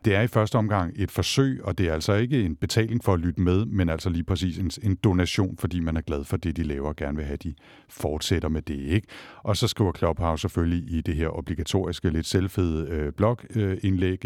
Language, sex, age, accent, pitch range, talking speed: Danish, male, 60-79, native, 80-100 Hz, 225 wpm